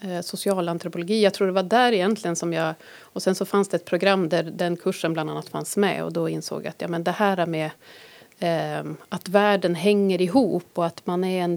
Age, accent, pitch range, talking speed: 30-49, native, 170-200 Hz, 225 wpm